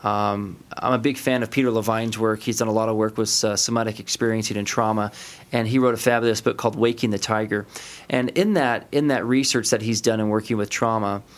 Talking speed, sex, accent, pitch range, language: 230 wpm, male, American, 110-130 Hz, English